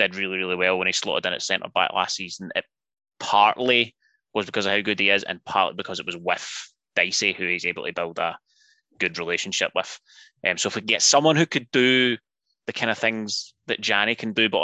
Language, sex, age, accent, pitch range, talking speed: English, male, 20-39, British, 95-115 Hz, 235 wpm